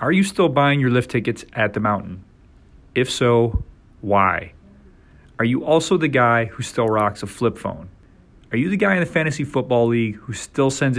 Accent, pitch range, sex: American, 100-125 Hz, male